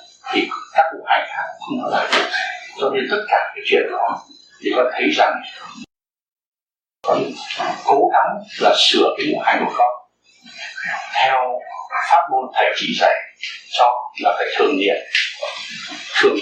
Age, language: 60-79, Vietnamese